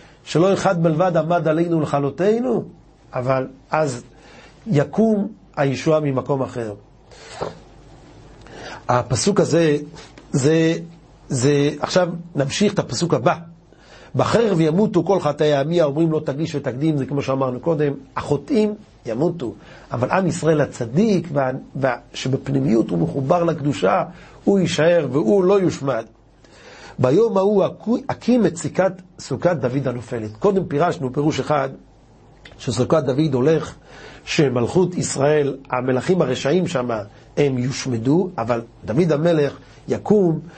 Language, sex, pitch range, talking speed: Hebrew, male, 130-170 Hz, 115 wpm